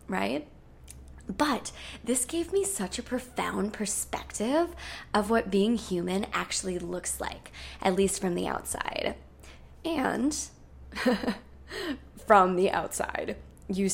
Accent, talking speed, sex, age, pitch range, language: American, 110 wpm, female, 20-39, 185-275 Hz, English